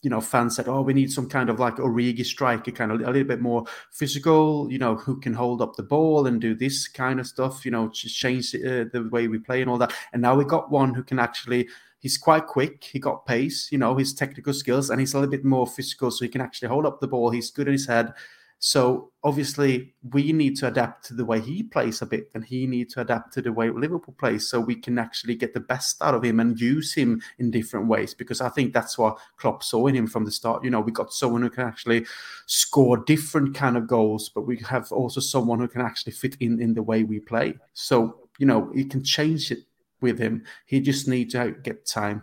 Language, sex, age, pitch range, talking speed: English, male, 30-49, 115-135 Hz, 255 wpm